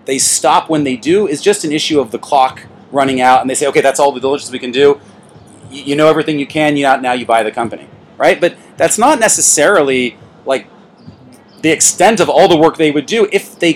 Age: 30-49